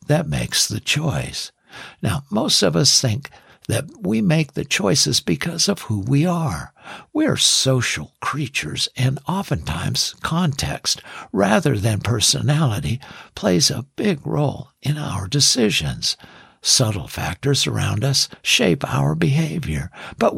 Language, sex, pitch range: English, male, 120-170 Hz